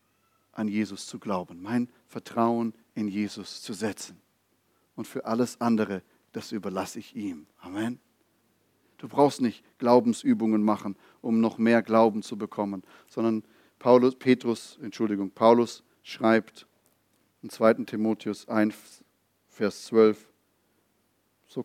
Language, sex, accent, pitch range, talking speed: German, male, German, 105-120 Hz, 120 wpm